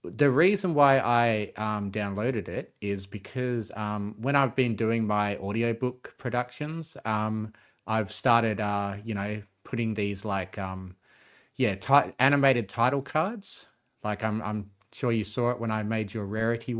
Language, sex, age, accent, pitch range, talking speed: English, male, 30-49, Australian, 100-120 Hz, 155 wpm